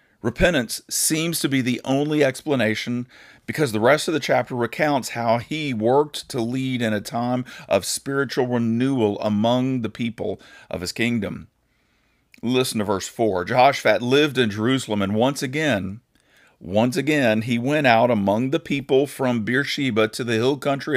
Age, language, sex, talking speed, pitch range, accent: 40-59, English, male, 160 wpm, 110-140 Hz, American